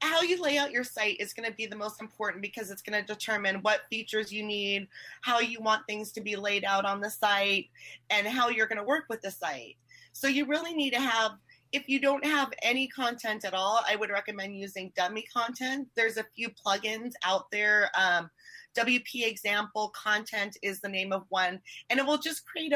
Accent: American